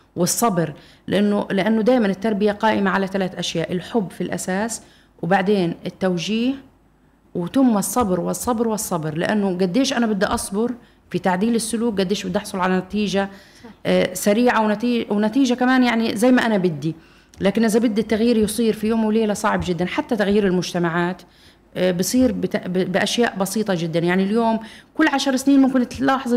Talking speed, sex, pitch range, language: 145 wpm, female, 185-235 Hz, Arabic